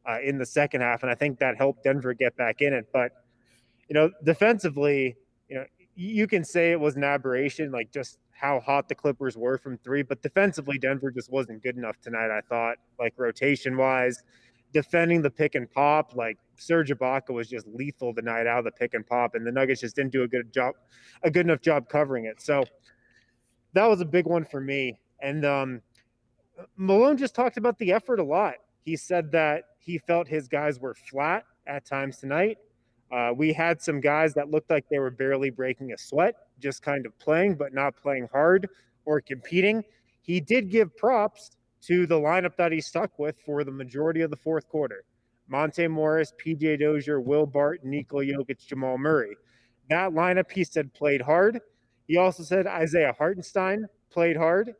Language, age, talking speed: English, 20-39, 195 wpm